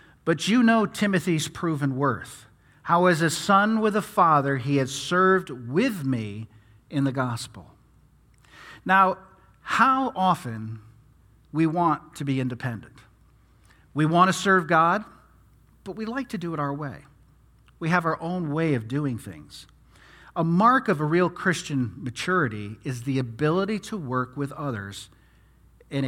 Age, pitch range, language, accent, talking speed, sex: 50-69, 125-185 Hz, English, American, 150 wpm, male